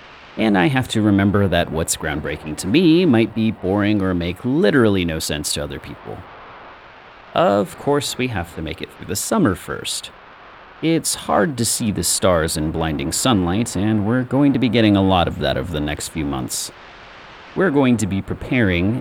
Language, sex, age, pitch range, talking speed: English, male, 30-49, 80-110 Hz, 195 wpm